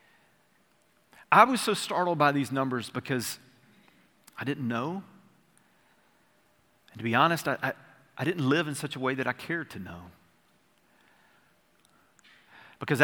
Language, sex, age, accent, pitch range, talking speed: English, male, 40-59, American, 115-145 Hz, 140 wpm